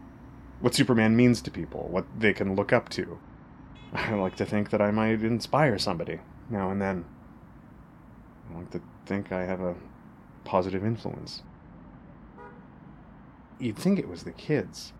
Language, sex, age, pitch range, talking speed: English, male, 30-49, 80-115 Hz, 150 wpm